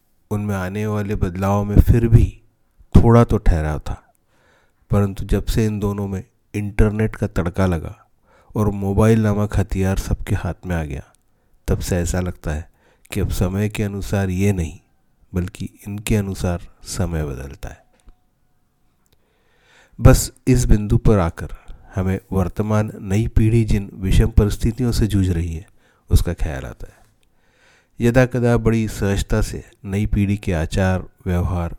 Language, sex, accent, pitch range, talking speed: Hindi, male, native, 90-105 Hz, 145 wpm